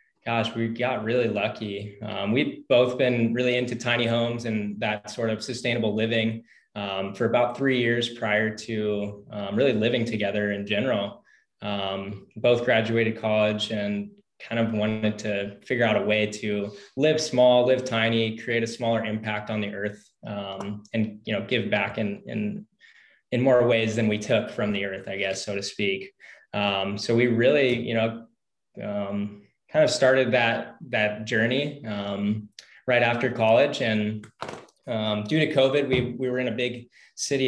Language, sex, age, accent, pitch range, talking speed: English, male, 20-39, American, 105-120 Hz, 170 wpm